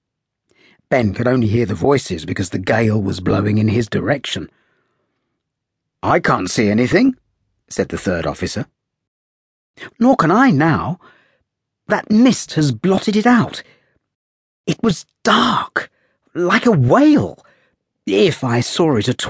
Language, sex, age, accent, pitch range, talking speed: English, male, 50-69, British, 100-150 Hz, 135 wpm